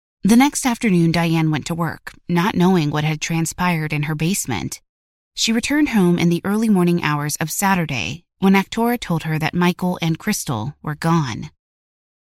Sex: female